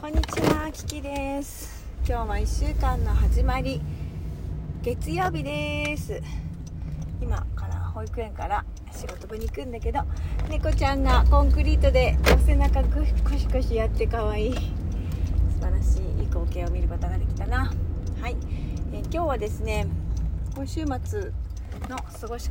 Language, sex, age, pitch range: Japanese, female, 30-49, 80-85 Hz